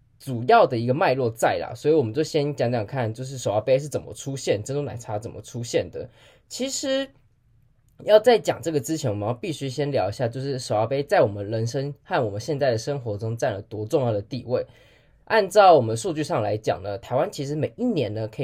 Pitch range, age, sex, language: 110-140 Hz, 10-29, male, Chinese